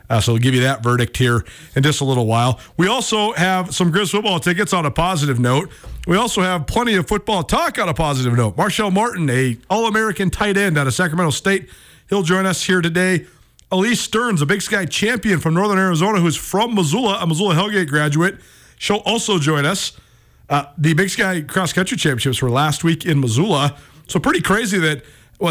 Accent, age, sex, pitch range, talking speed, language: American, 40-59, male, 135-190 Hz, 205 wpm, English